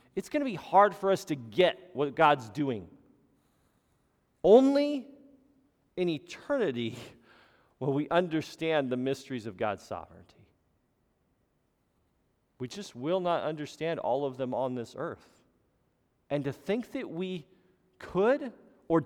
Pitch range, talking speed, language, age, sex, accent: 110-165 Hz, 130 wpm, English, 40-59, male, American